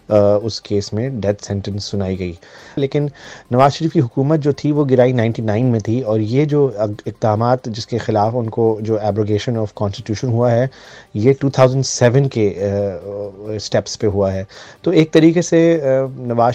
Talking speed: 160 wpm